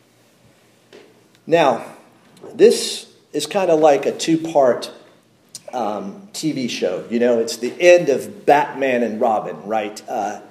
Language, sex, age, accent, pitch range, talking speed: English, male, 40-59, American, 145-225 Hz, 125 wpm